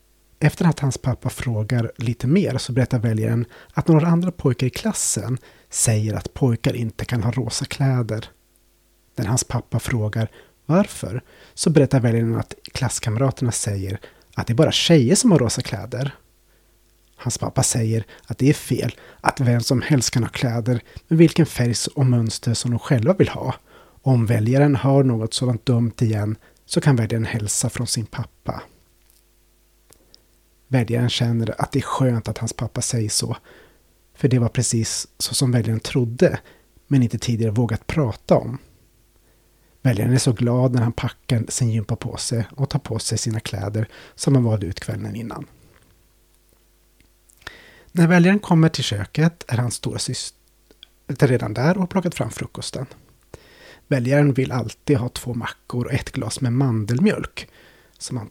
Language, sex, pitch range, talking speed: Swedish, male, 110-135 Hz, 165 wpm